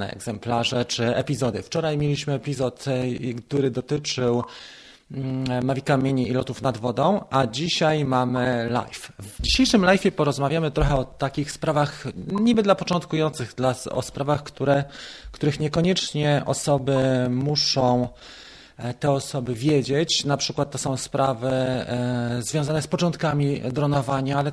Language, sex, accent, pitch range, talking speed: Polish, male, native, 125-150 Hz, 120 wpm